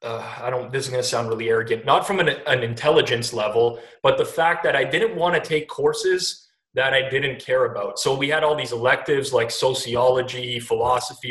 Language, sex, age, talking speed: English, male, 20-39, 210 wpm